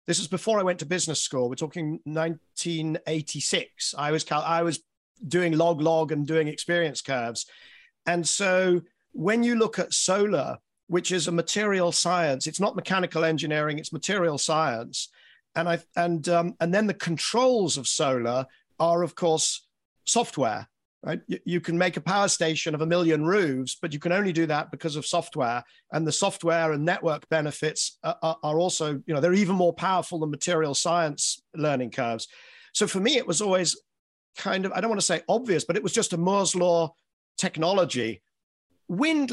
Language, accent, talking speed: English, British, 180 wpm